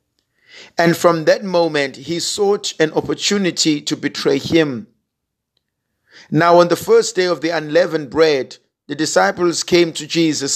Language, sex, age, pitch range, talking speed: English, male, 50-69, 145-180 Hz, 140 wpm